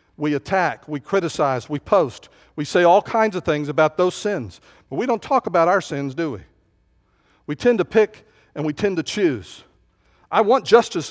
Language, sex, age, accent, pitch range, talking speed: English, male, 50-69, American, 155-220 Hz, 195 wpm